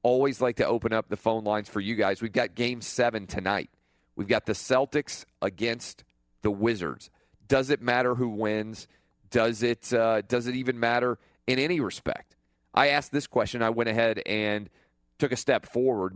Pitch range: 95-120 Hz